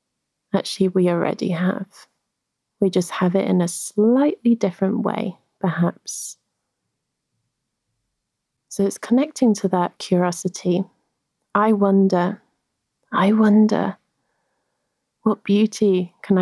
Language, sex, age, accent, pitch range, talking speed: English, female, 30-49, British, 180-210 Hz, 100 wpm